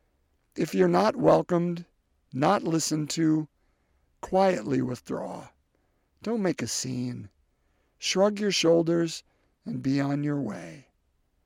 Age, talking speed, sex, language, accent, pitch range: 50-69, 110 wpm, male, English, American, 135-190 Hz